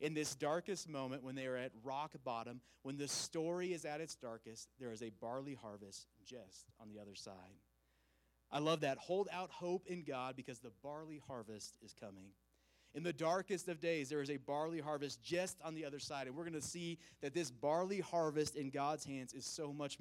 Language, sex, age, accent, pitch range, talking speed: English, male, 30-49, American, 120-155 Hz, 215 wpm